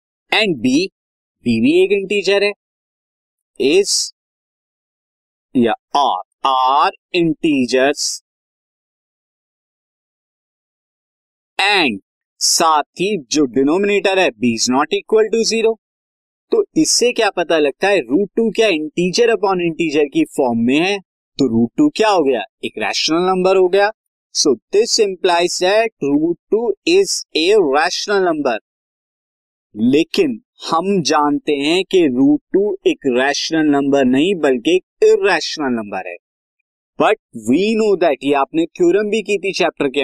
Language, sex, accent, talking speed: Hindi, male, native, 135 wpm